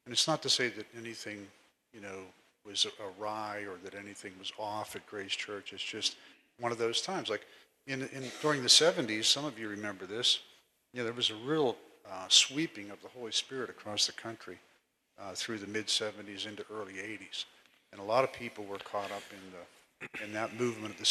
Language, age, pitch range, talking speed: English, 50-69, 100-115 Hz, 210 wpm